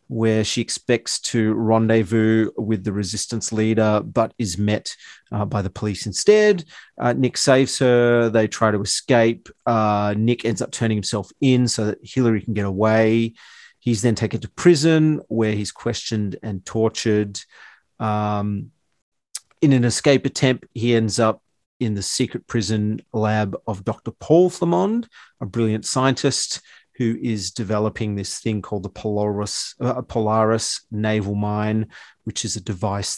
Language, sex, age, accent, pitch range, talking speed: English, male, 40-59, Australian, 105-125 Hz, 150 wpm